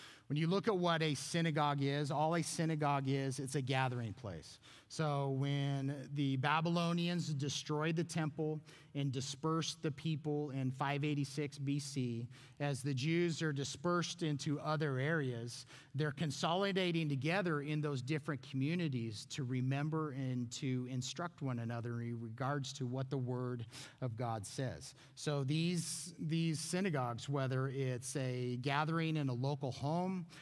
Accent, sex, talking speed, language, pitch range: American, male, 145 wpm, English, 135-155 Hz